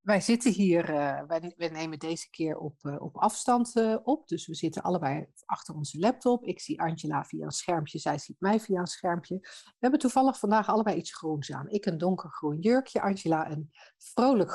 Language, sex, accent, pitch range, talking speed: Dutch, female, Dutch, 170-235 Hz, 200 wpm